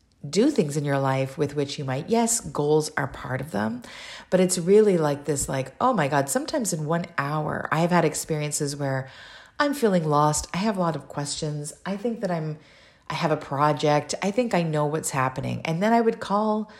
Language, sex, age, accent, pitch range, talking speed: English, female, 40-59, American, 145-210 Hz, 215 wpm